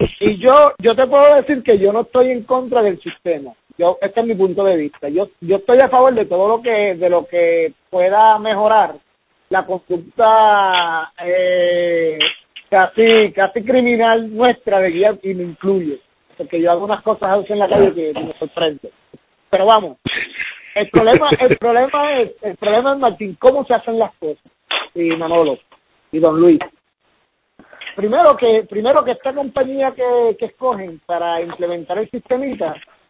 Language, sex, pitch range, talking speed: Spanish, male, 185-245 Hz, 170 wpm